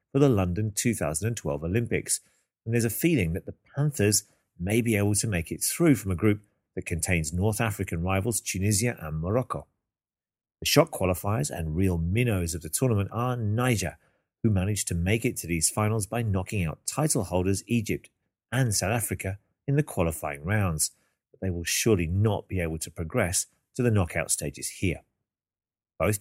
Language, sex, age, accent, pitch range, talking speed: English, male, 40-59, British, 90-115 Hz, 175 wpm